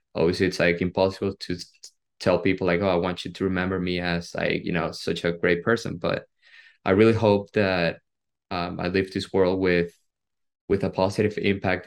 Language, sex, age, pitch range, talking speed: English, male, 20-39, 90-100 Hz, 190 wpm